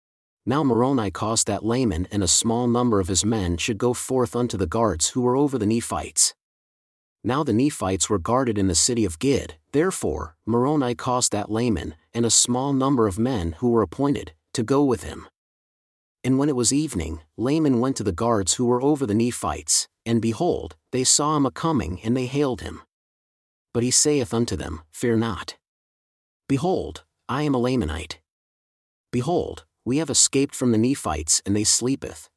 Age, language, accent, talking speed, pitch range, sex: 40-59, English, American, 185 wpm, 100-130 Hz, male